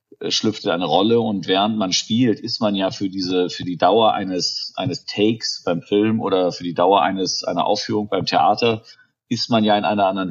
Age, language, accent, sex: 40-59, German, German, male